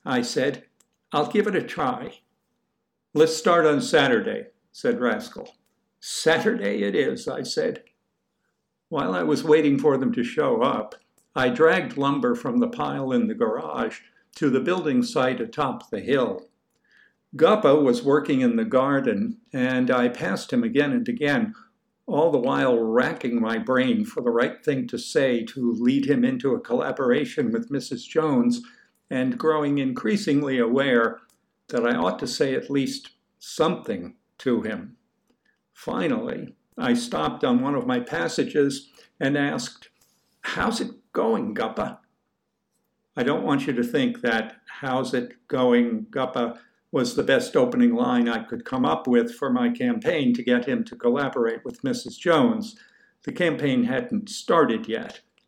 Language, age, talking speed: English, 60-79, 155 wpm